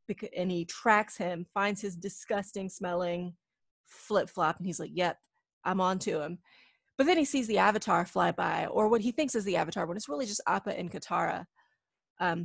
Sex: female